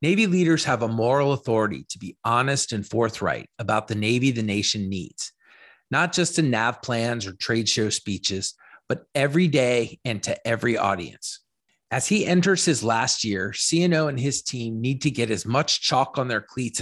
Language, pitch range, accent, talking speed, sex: English, 110-155 Hz, American, 185 wpm, male